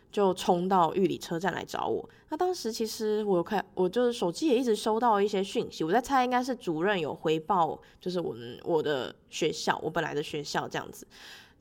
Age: 20-39